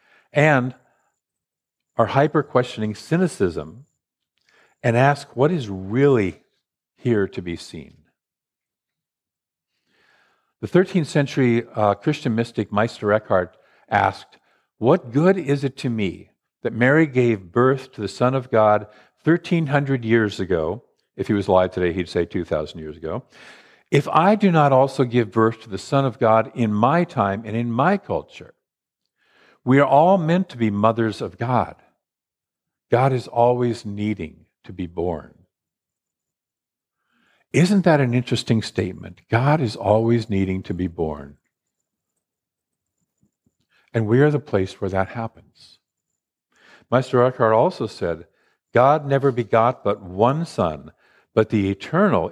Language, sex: English, male